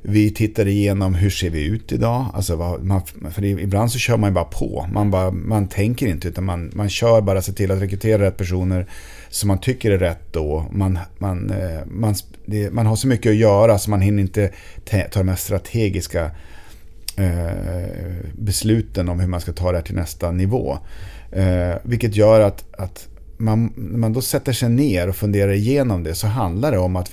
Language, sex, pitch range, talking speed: Swedish, male, 90-105 Hz, 205 wpm